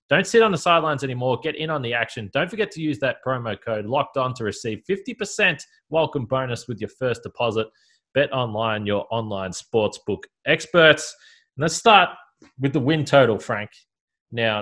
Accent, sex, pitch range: Australian, male, 115-160 Hz